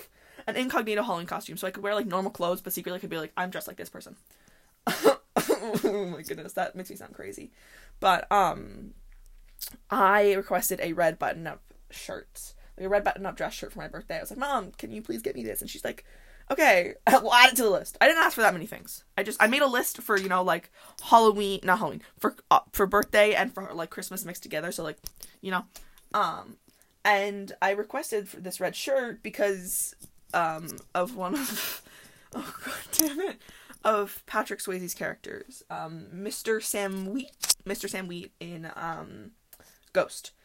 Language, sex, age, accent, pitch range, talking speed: English, female, 20-39, American, 185-215 Hz, 195 wpm